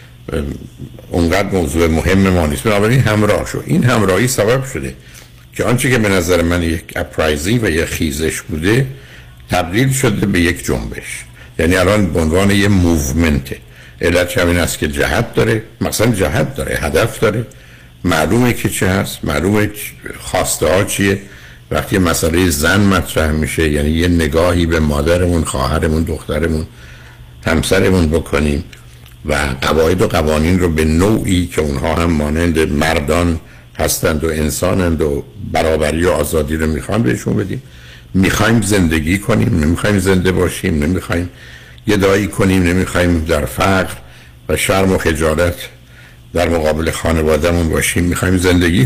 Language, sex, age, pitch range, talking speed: Persian, male, 60-79, 80-100 Hz, 135 wpm